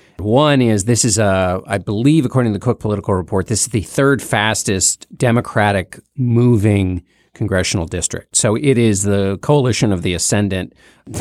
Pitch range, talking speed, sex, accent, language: 100-130 Hz, 160 wpm, male, American, English